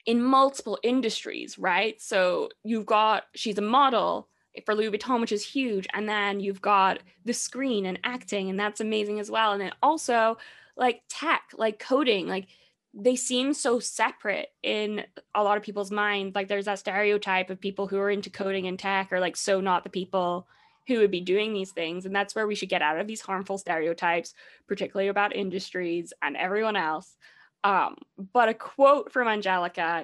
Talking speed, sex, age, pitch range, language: 190 wpm, female, 10-29, 190-225 Hz, English